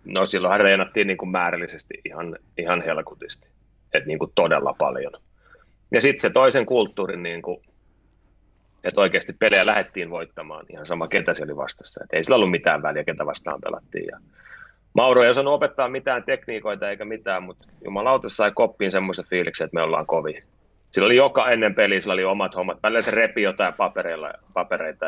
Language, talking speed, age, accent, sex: Finnish, 165 wpm, 30-49, native, male